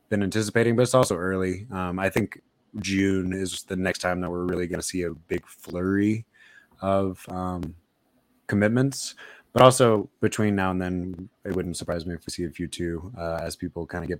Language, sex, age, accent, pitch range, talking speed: English, male, 20-39, American, 90-105 Hz, 205 wpm